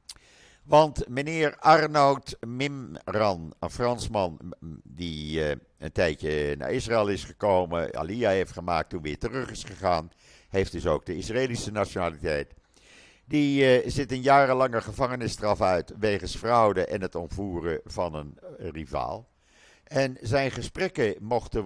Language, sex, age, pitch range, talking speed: Dutch, male, 50-69, 85-120 Hz, 130 wpm